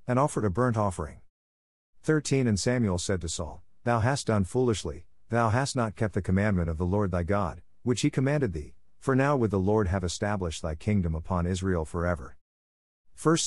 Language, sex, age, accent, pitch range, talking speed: English, male, 50-69, American, 85-115 Hz, 190 wpm